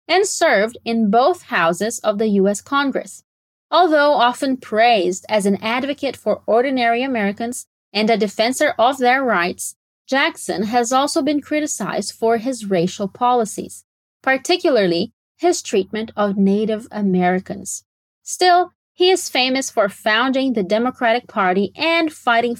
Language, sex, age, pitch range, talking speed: Portuguese, female, 20-39, 210-280 Hz, 135 wpm